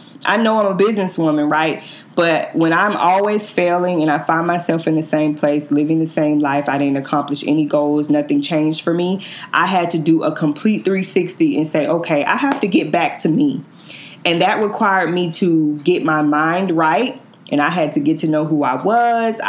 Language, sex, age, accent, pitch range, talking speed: English, female, 20-39, American, 155-200 Hz, 210 wpm